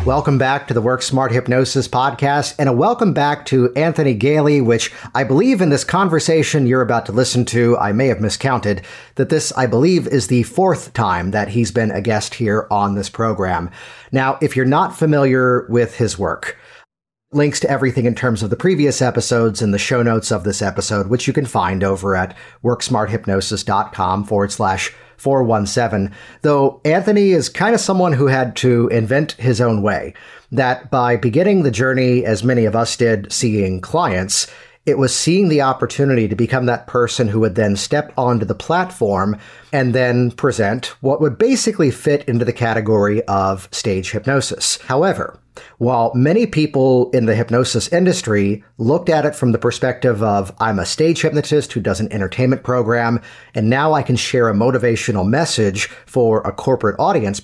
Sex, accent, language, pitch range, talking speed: male, American, English, 110-140 Hz, 180 wpm